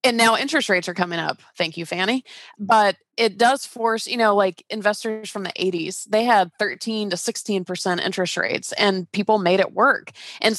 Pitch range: 190-225 Hz